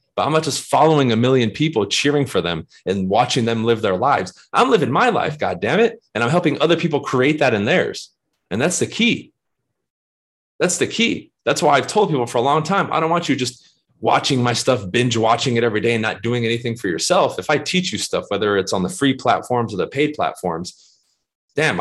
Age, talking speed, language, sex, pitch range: 30-49, 230 wpm, English, male, 110-145 Hz